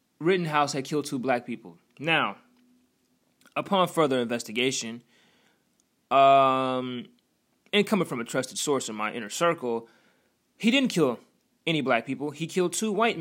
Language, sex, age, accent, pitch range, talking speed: English, male, 20-39, American, 130-180 Hz, 140 wpm